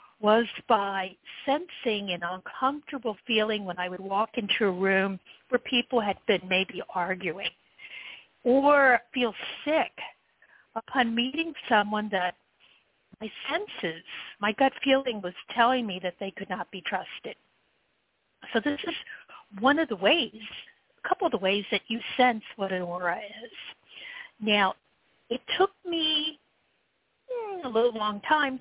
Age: 50-69